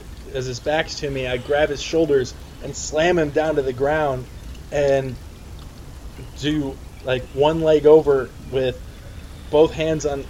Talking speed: 150 wpm